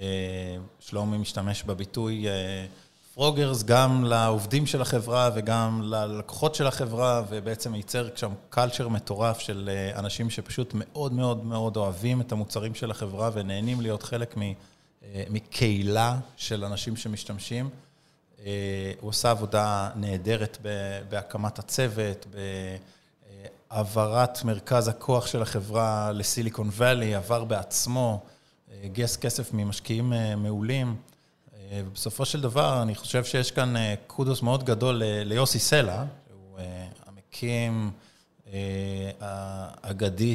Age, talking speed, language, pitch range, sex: 20-39, 110 wpm, Hebrew, 100-125 Hz, male